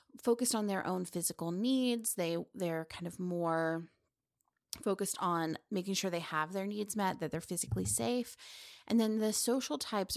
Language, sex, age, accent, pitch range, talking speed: English, female, 30-49, American, 175-220 Hz, 175 wpm